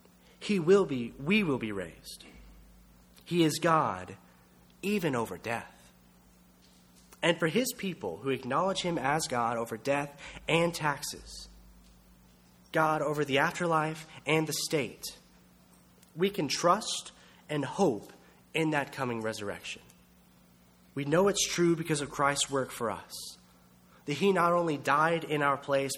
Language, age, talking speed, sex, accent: English, 30-49, 140 wpm, male, American